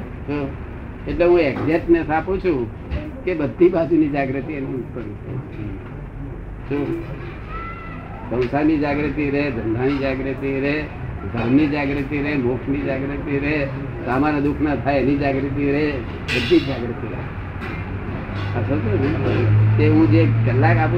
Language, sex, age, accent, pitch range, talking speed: Gujarati, male, 60-79, native, 115-155 Hz, 35 wpm